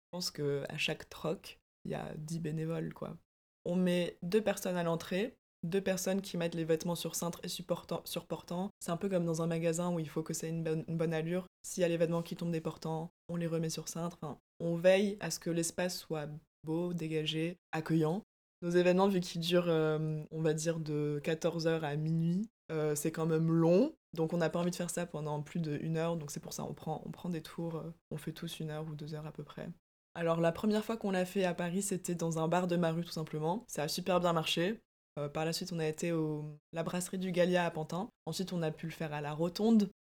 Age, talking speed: 20-39, 255 wpm